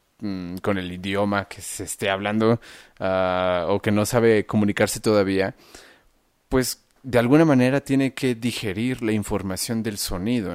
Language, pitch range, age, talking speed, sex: Spanish, 95-125 Hz, 30-49, 135 wpm, male